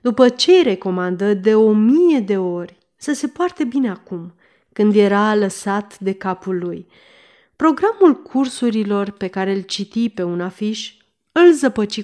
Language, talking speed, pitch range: Romanian, 155 wpm, 195-255 Hz